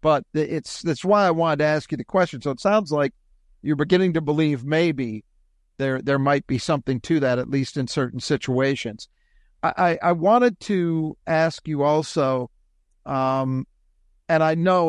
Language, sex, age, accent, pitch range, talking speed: English, male, 50-69, American, 130-165 Hz, 175 wpm